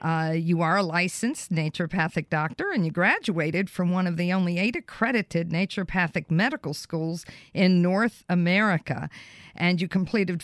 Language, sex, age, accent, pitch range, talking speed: English, female, 50-69, American, 160-200 Hz, 150 wpm